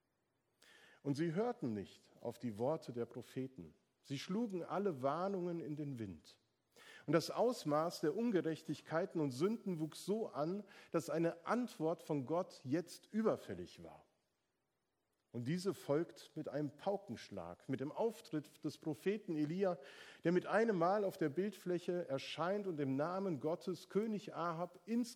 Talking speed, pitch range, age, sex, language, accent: 145 wpm, 140-185 Hz, 50-69, male, German, German